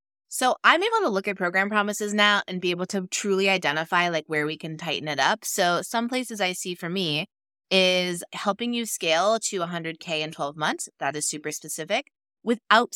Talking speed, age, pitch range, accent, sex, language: 200 wpm, 20-39, 160-210 Hz, American, female, English